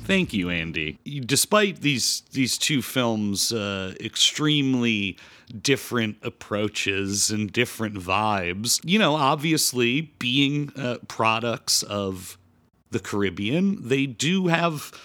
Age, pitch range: 40-59, 100-135 Hz